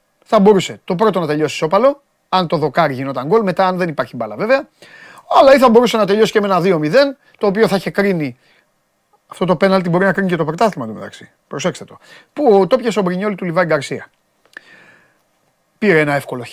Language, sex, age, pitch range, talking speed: Greek, male, 30-49, 150-200 Hz, 115 wpm